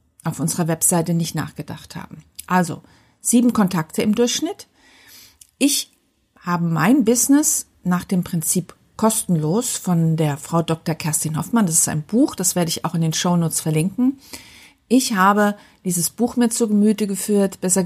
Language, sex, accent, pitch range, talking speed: German, female, German, 175-225 Hz, 155 wpm